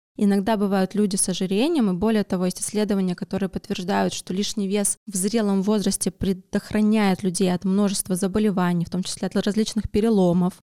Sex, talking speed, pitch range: female, 160 wpm, 190-215 Hz